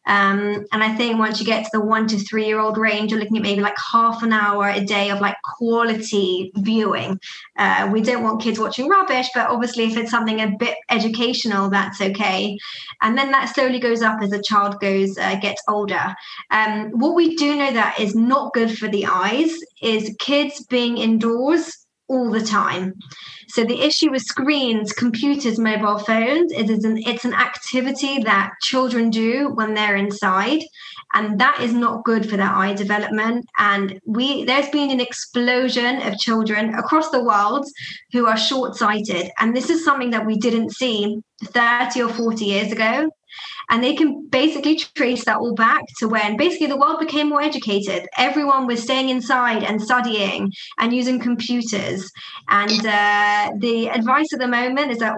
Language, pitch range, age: English, 210-260 Hz, 20-39